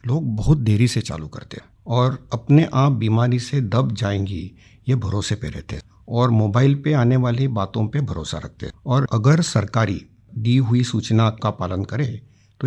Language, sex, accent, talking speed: Hindi, male, native, 180 wpm